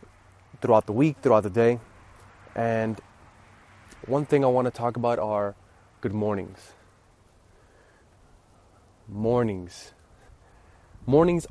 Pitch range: 100-125 Hz